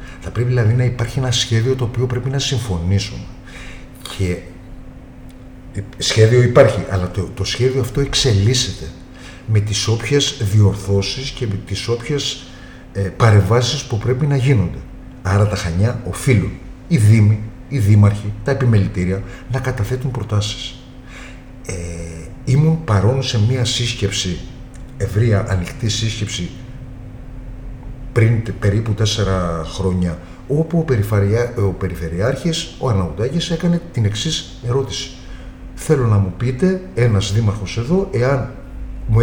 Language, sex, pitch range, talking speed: Greek, male, 100-130 Hz, 125 wpm